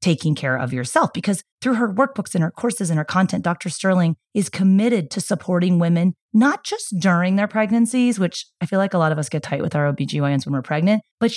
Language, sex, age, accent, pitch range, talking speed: English, female, 30-49, American, 155-205 Hz, 225 wpm